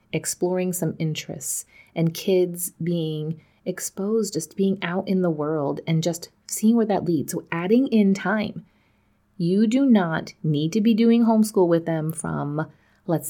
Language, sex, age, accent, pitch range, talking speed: English, female, 30-49, American, 155-200 Hz, 160 wpm